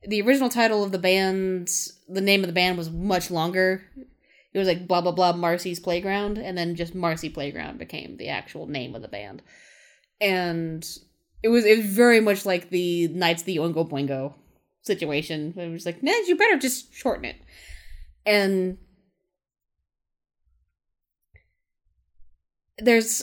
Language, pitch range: English, 165-225 Hz